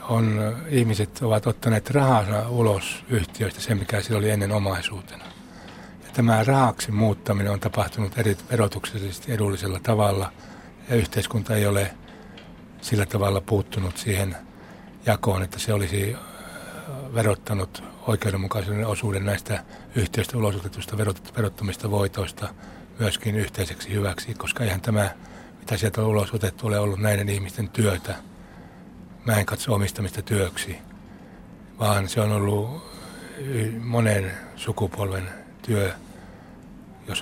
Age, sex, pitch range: 60-79, male, 100-110 Hz